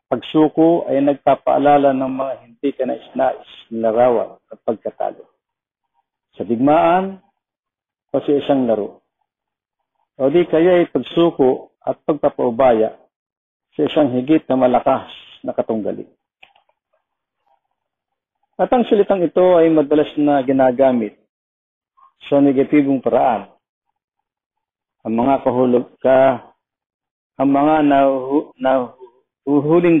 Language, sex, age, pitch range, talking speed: Filipino, male, 50-69, 130-165 Hz, 100 wpm